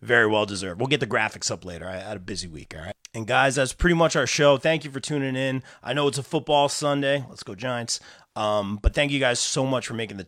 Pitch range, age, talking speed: 105-125 Hz, 30-49, 275 wpm